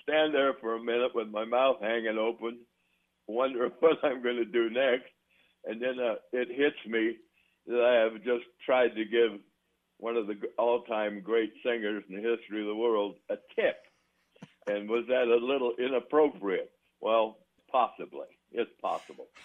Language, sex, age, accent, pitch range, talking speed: English, male, 60-79, American, 105-125 Hz, 165 wpm